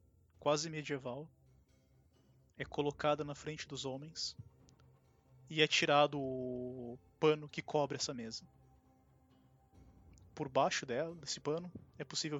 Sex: male